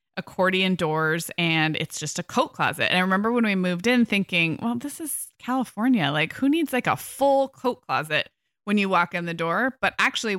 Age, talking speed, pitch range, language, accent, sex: 20-39, 210 wpm, 170-210 Hz, English, American, female